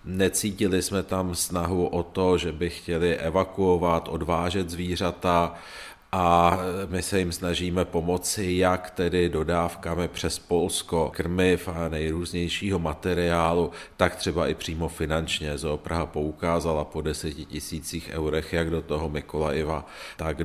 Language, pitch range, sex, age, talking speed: Czech, 80-90 Hz, male, 40-59, 125 wpm